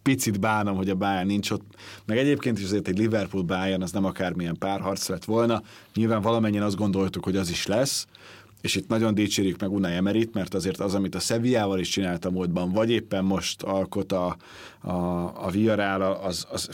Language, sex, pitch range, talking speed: Hungarian, male, 95-115 Hz, 195 wpm